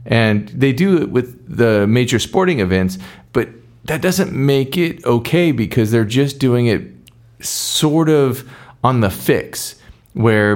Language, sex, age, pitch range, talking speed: English, male, 40-59, 100-125 Hz, 150 wpm